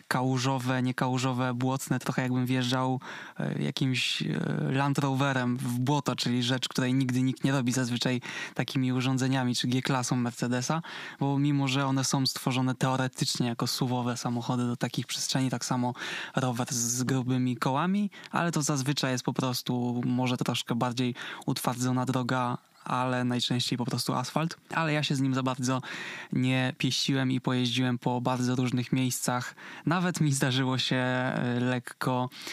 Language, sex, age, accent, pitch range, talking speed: Polish, male, 20-39, native, 125-140 Hz, 145 wpm